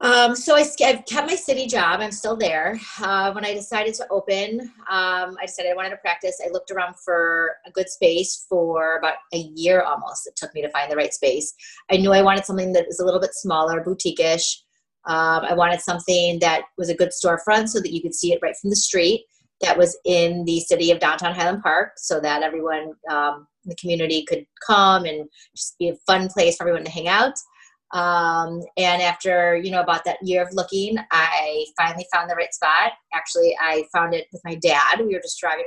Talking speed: 220 wpm